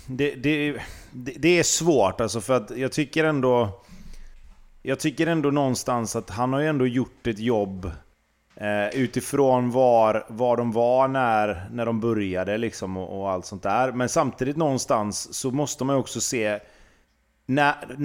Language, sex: Swedish, male